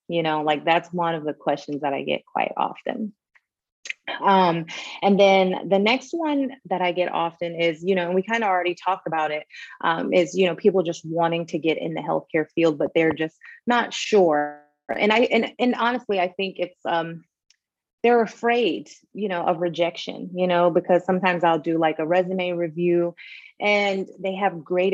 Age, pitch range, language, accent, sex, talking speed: 30-49, 165-195 Hz, English, American, female, 195 wpm